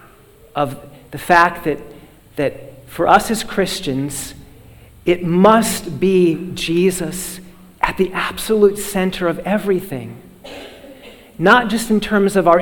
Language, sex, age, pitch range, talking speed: English, male, 40-59, 170-200 Hz, 120 wpm